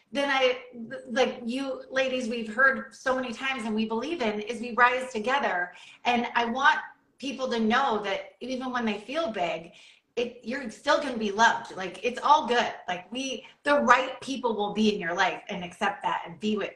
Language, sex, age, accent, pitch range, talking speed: English, female, 30-49, American, 215-290 Hz, 200 wpm